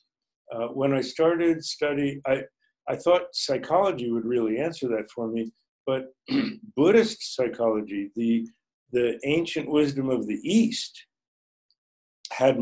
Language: English